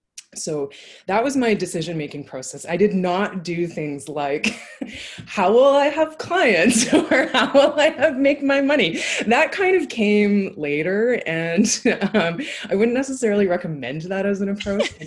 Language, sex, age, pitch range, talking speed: English, female, 20-39, 150-210 Hz, 165 wpm